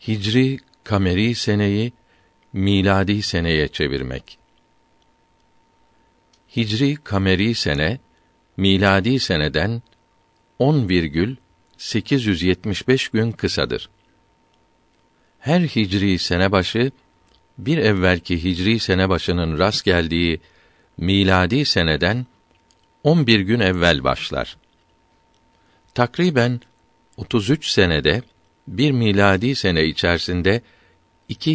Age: 50-69